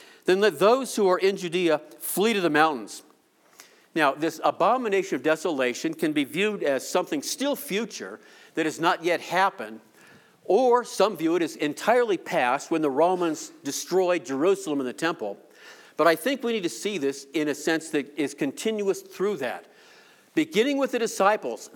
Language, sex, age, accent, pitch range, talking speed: English, male, 50-69, American, 150-220 Hz, 175 wpm